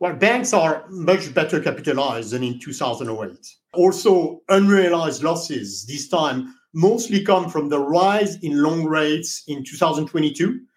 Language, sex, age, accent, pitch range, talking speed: English, male, 50-69, French, 155-205 Hz, 135 wpm